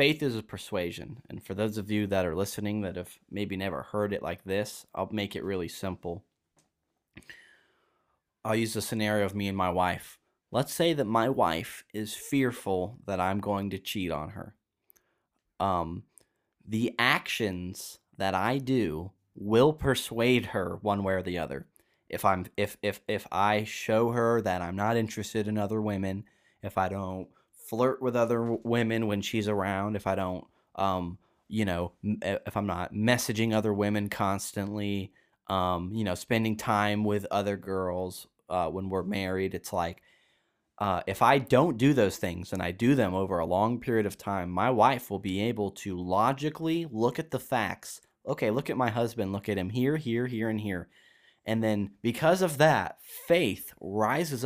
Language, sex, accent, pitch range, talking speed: English, male, American, 95-115 Hz, 180 wpm